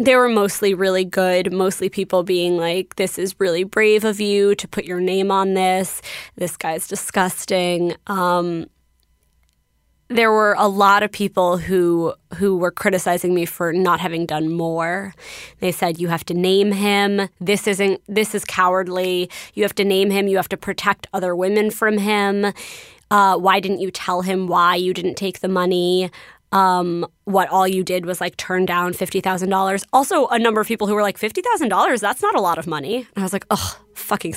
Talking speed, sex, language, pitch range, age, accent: 195 wpm, female, English, 180-210 Hz, 20-39, American